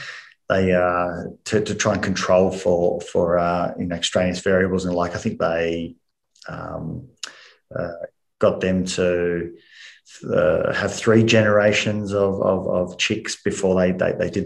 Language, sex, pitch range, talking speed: English, male, 90-105 Hz, 155 wpm